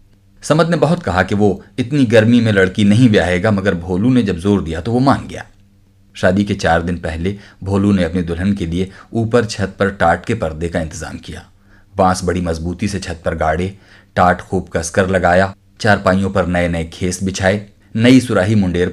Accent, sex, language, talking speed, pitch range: native, male, Hindi, 195 wpm, 90-110 Hz